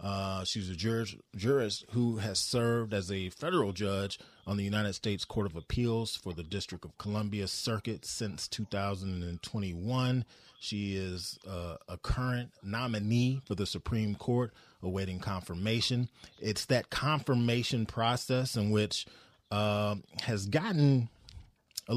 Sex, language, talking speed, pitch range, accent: male, English, 130 wpm, 95-115 Hz, American